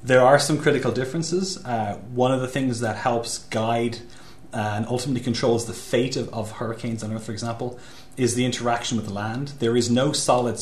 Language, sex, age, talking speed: English, male, 30-49, 200 wpm